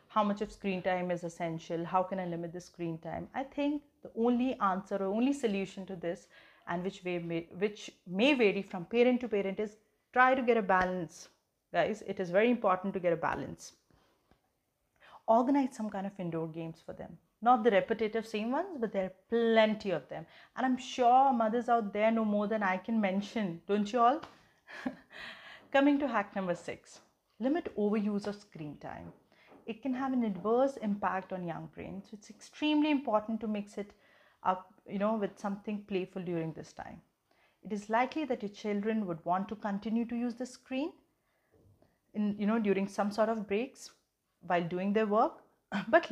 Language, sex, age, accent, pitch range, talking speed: English, female, 30-49, Indian, 190-235 Hz, 185 wpm